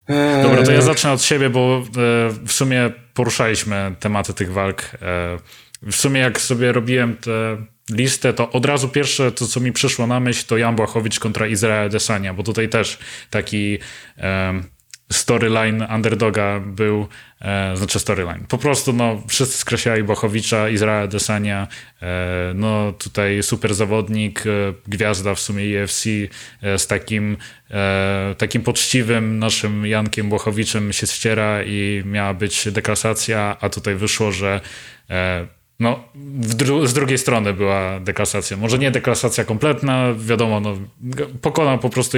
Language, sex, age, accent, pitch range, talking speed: Polish, male, 20-39, native, 100-120 Hz, 145 wpm